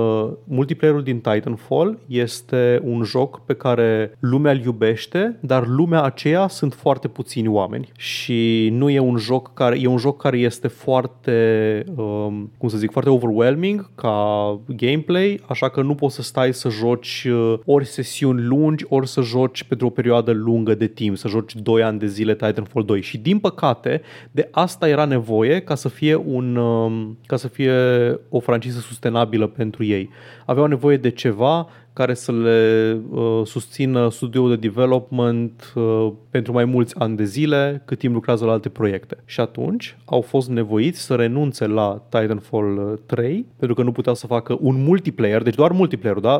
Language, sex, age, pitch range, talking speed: Romanian, male, 30-49, 115-140 Hz, 170 wpm